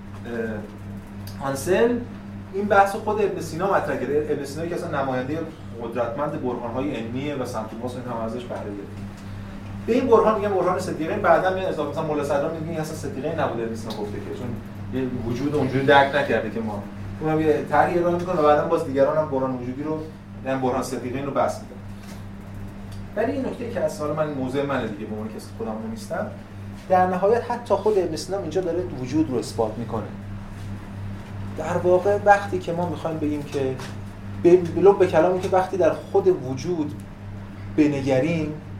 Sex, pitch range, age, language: male, 100-165 Hz, 30-49, Persian